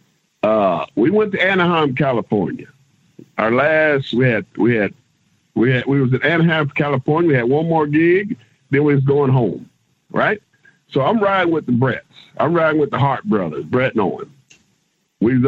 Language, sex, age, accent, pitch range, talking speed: English, male, 50-69, American, 130-180 Hz, 180 wpm